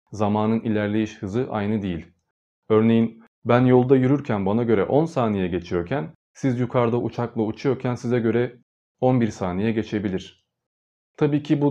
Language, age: Turkish, 40-59